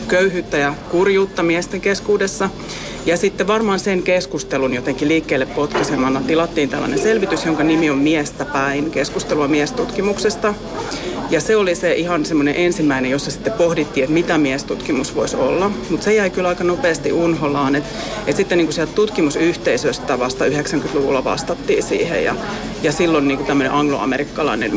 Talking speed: 150 wpm